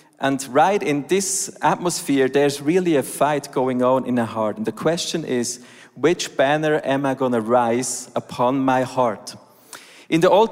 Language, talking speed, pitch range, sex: German, 175 wpm, 130-175 Hz, male